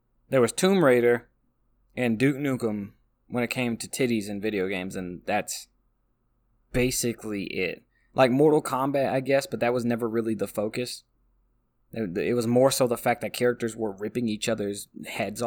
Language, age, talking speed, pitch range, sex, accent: English, 20-39, 170 wpm, 105-130 Hz, male, American